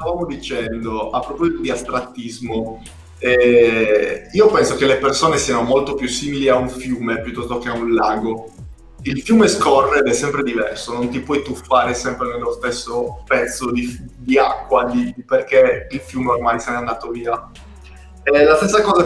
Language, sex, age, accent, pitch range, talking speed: Italian, male, 20-39, native, 120-145 Hz, 175 wpm